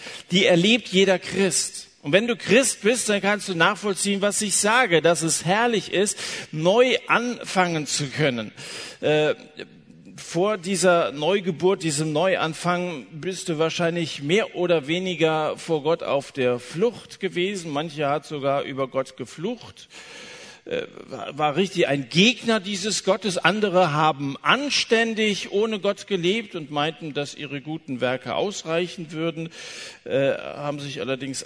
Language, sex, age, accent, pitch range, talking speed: German, male, 50-69, German, 150-200 Hz, 135 wpm